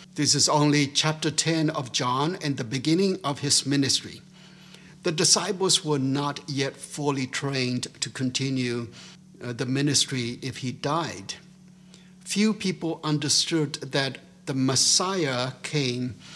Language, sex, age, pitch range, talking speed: English, male, 60-79, 140-180 Hz, 125 wpm